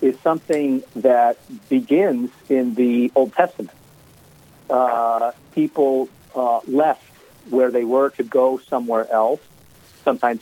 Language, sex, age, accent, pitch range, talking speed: English, male, 50-69, American, 115-145 Hz, 115 wpm